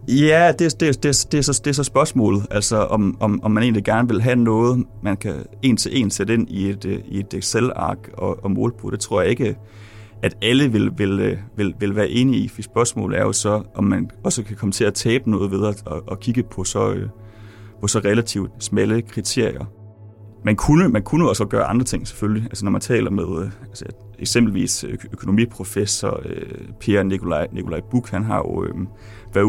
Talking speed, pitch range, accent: 205 wpm, 100-115 Hz, native